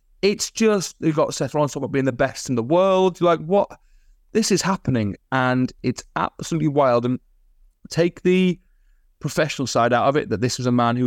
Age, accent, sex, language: 30-49, British, male, English